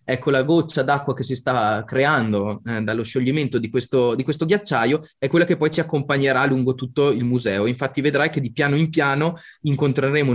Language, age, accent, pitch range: Italian, 20-39, native, 120-155 Hz